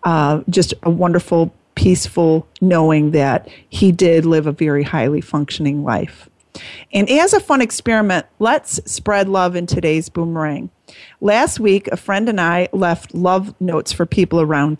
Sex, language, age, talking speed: female, English, 30-49, 155 wpm